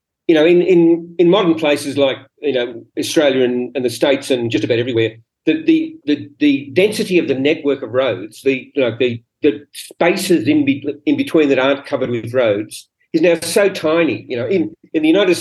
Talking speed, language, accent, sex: 210 wpm, English, Australian, male